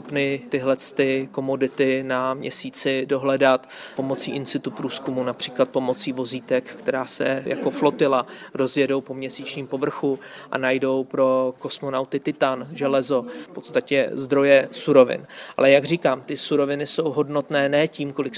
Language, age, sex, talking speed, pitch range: Czech, 30-49, male, 135 wpm, 135-150 Hz